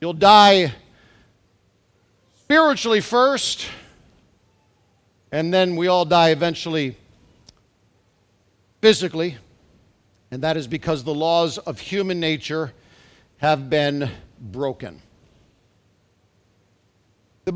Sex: male